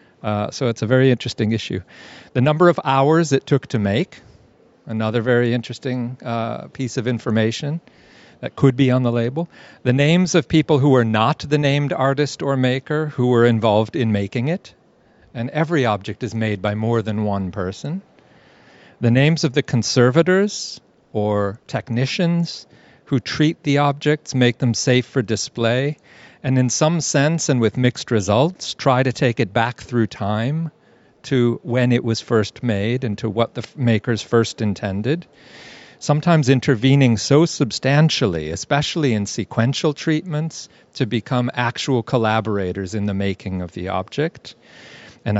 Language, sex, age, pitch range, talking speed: English, male, 50-69, 110-145 Hz, 155 wpm